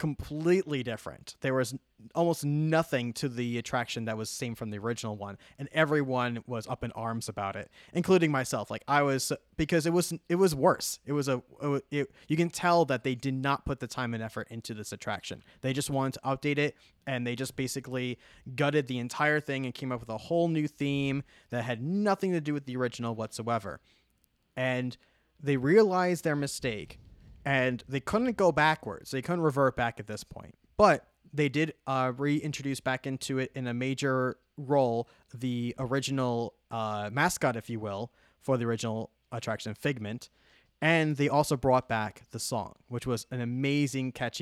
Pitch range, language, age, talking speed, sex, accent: 115-150 Hz, English, 20-39, 185 wpm, male, American